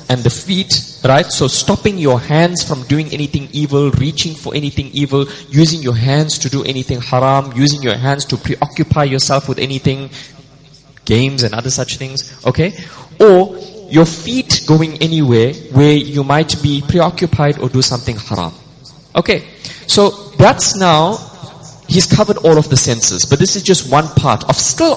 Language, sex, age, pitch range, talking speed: English, male, 20-39, 135-175 Hz, 165 wpm